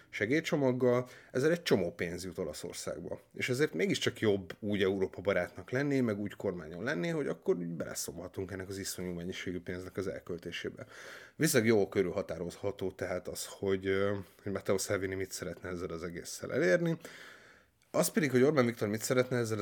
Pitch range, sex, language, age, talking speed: 95-115 Hz, male, Hungarian, 30-49, 160 wpm